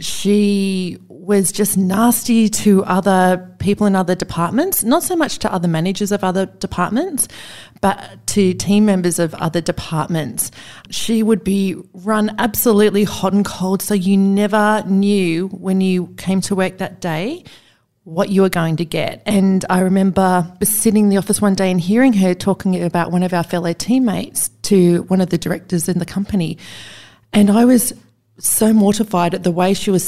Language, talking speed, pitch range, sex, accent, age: English, 175 wpm, 180-215 Hz, female, Australian, 30-49